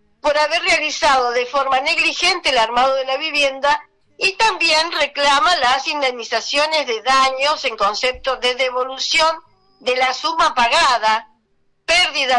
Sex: female